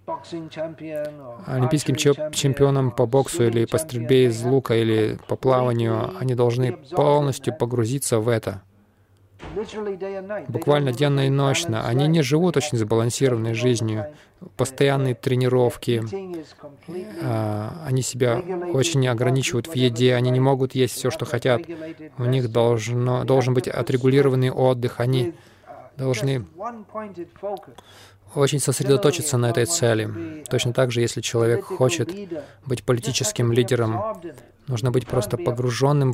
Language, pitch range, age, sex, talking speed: Russian, 120-140 Hz, 20-39, male, 115 wpm